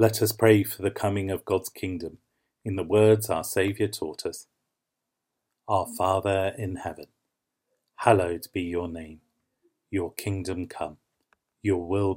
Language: English